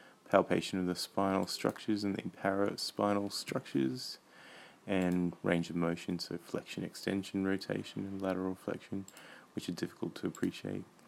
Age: 20-39